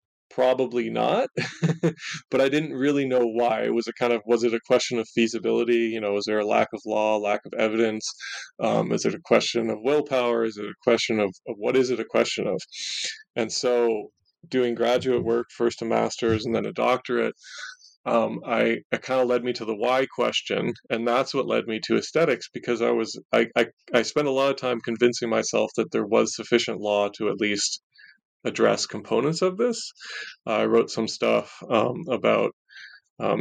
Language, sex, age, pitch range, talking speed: English, male, 30-49, 115-130 Hz, 200 wpm